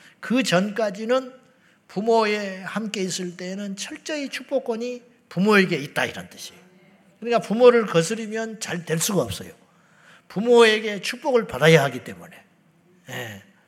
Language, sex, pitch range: Korean, male, 165-215 Hz